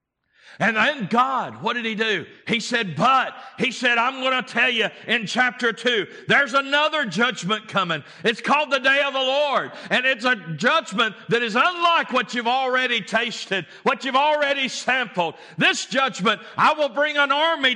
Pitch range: 160-250 Hz